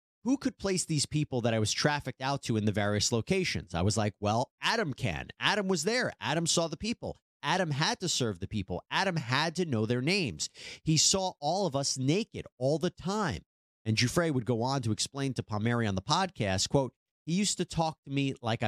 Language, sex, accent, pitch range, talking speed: English, male, American, 110-150 Hz, 220 wpm